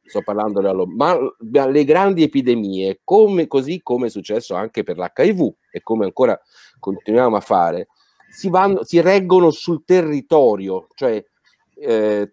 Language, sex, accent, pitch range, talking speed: Italian, male, native, 120-170 Hz, 140 wpm